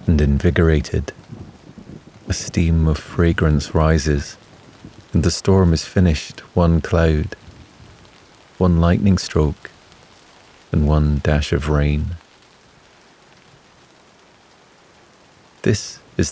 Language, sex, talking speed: English, male, 90 wpm